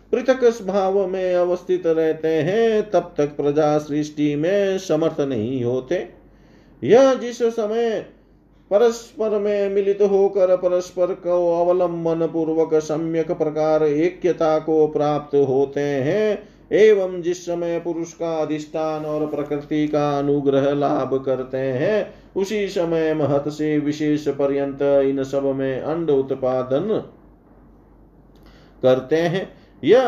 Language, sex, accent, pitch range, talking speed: Hindi, male, native, 140-180 Hz, 115 wpm